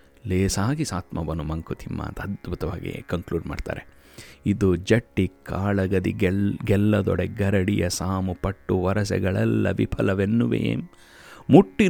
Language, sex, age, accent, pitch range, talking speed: Kannada, male, 30-49, native, 90-115 Hz, 85 wpm